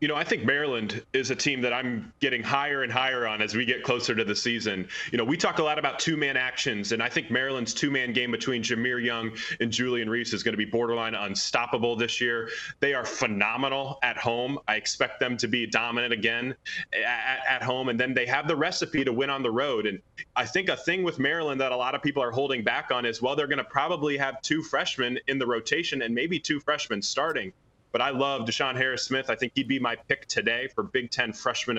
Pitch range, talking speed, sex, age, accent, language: 120-140 Hz, 240 wpm, male, 20-39, American, English